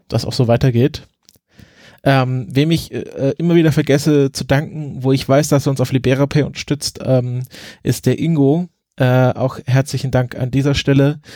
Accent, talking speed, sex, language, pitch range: German, 175 wpm, male, German, 120-140 Hz